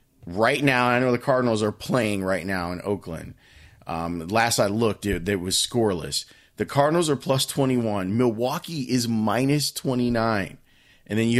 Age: 30-49